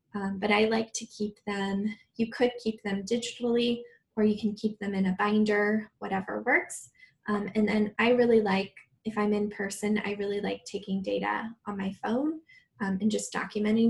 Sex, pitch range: female, 200-230 Hz